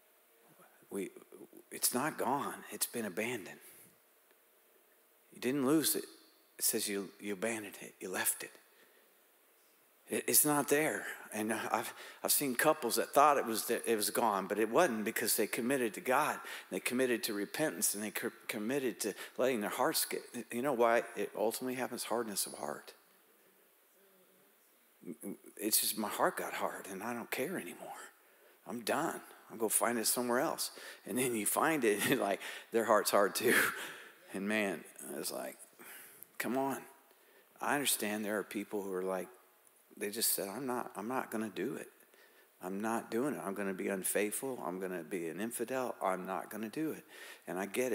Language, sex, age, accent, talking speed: English, male, 50-69, American, 175 wpm